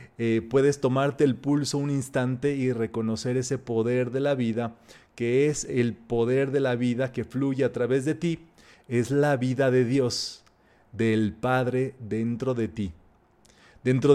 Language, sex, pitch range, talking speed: Spanish, male, 120-145 Hz, 160 wpm